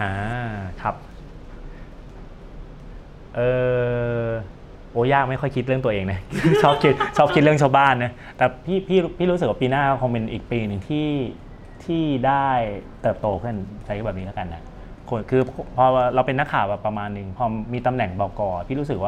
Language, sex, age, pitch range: Thai, male, 20-39, 100-125 Hz